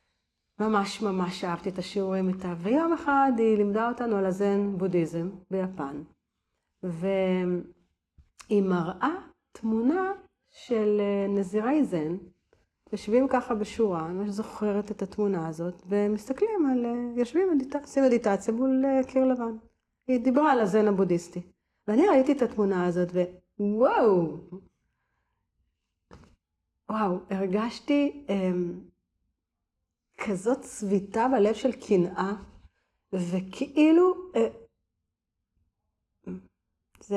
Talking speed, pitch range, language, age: 95 wpm, 180-260 Hz, Hebrew, 40-59